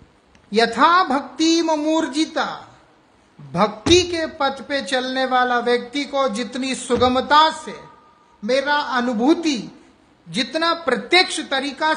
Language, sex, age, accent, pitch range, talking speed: English, male, 50-69, Indian, 230-295 Hz, 95 wpm